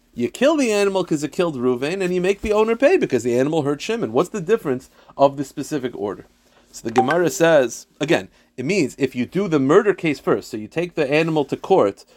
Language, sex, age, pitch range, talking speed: English, male, 30-49, 120-165 Hz, 230 wpm